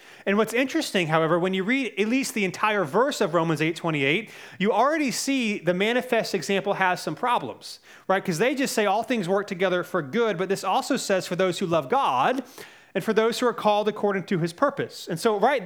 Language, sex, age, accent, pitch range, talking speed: English, male, 30-49, American, 175-220 Hz, 220 wpm